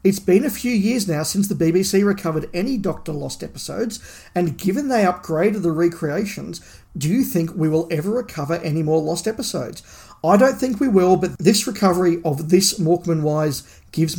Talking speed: 185 wpm